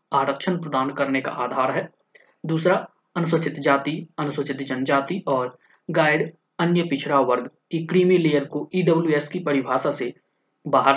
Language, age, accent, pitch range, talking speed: Hindi, 20-39, native, 135-175 Hz, 120 wpm